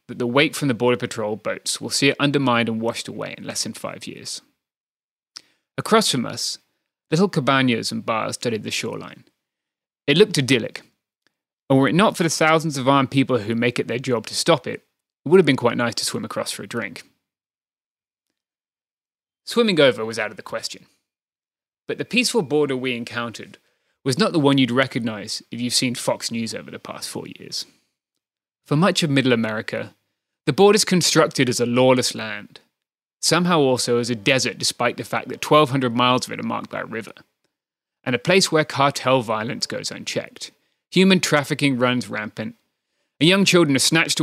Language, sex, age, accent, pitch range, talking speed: English, male, 20-39, British, 120-160 Hz, 190 wpm